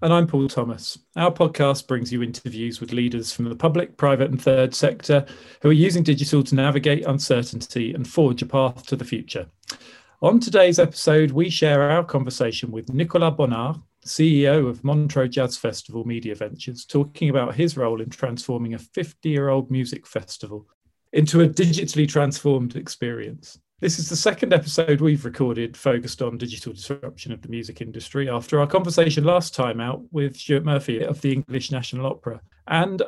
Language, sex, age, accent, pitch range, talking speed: English, male, 40-59, British, 120-150 Hz, 175 wpm